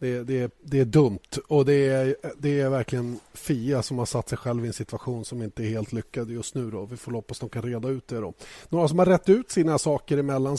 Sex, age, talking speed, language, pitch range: male, 30-49, 260 wpm, Swedish, 120-140 Hz